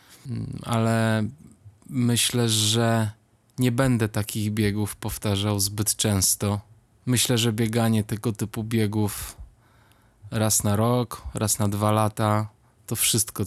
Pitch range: 105-120 Hz